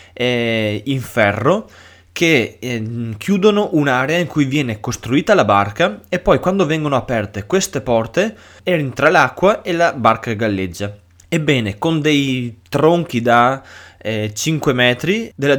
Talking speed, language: 125 wpm, Italian